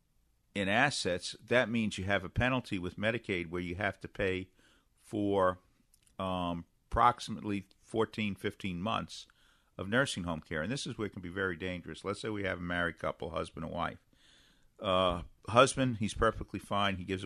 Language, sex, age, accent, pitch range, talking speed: English, male, 50-69, American, 90-115 Hz, 175 wpm